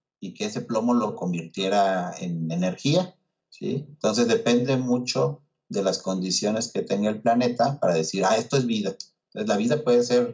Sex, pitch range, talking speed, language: male, 95-130 Hz, 175 wpm, Spanish